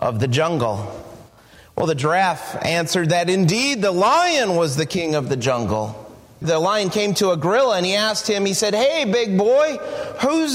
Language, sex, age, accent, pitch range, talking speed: English, male, 30-49, American, 170-270 Hz, 190 wpm